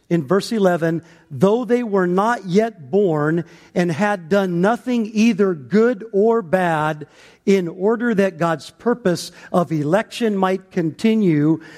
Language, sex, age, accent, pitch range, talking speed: English, male, 50-69, American, 170-225 Hz, 130 wpm